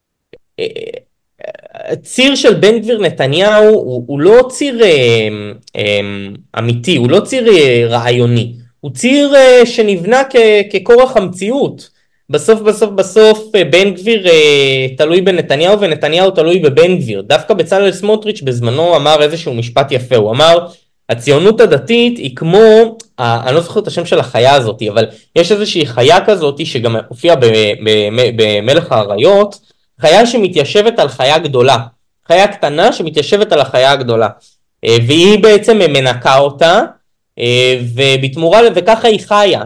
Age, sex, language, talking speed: 20-39, male, Hebrew, 125 wpm